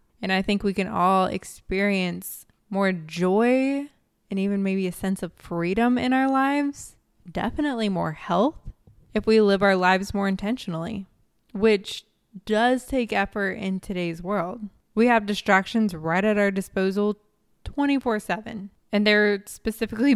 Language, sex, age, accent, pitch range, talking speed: English, female, 20-39, American, 195-245 Hz, 140 wpm